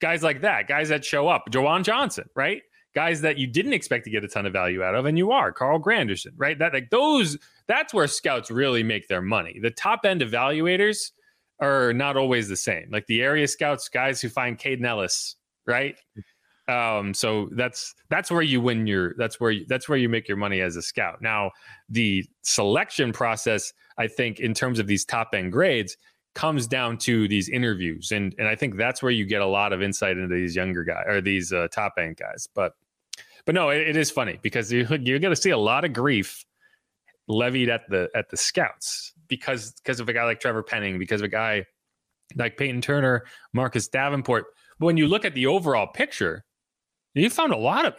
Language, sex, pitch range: English, male, 105-150 Hz